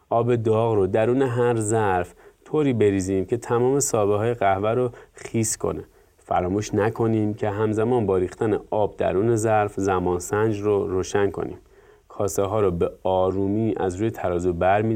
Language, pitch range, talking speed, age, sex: Persian, 100-120 Hz, 150 wpm, 30-49, male